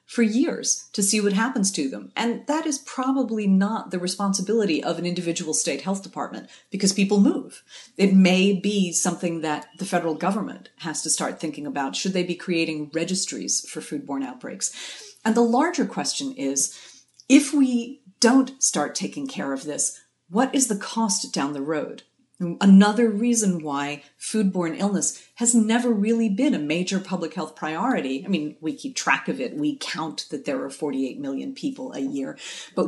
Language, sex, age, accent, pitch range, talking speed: English, female, 40-59, American, 160-230 Hz, 175 wpm